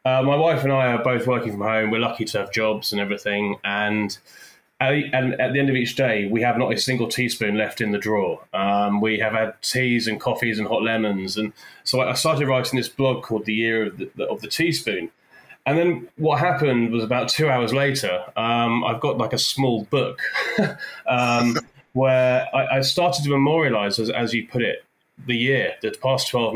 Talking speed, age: 210 wpm, 20-39